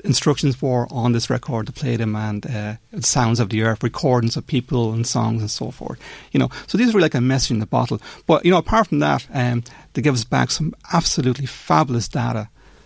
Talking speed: 230 wpm